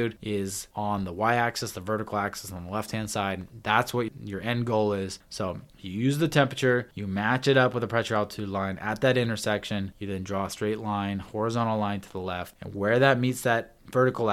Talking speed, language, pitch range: 220 wpm, English, 95-115 Hz